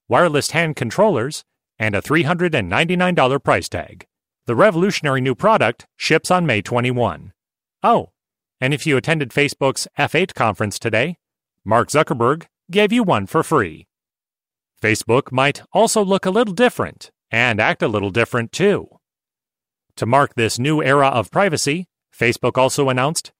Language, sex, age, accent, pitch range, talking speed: English, male, 40-59, American, 115-160 Hz, 140 wpm